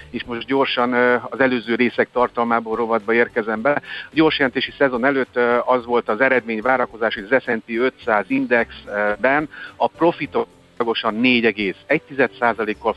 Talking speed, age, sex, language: 125 wpm, 50-69, male, Hungarian